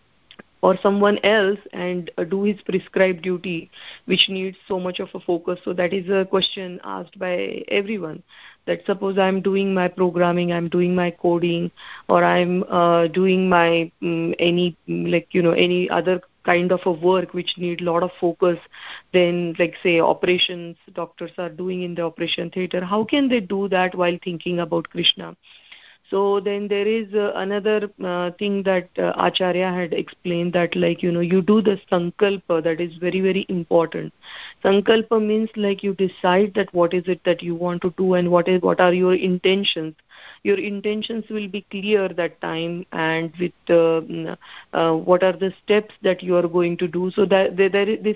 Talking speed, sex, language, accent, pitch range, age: 185 wpm, female, English, Indian, 175-195 Hz, 30-49